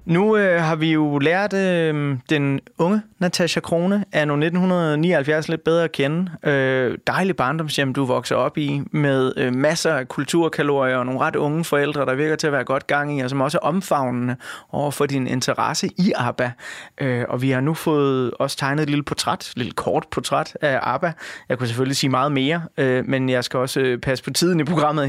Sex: male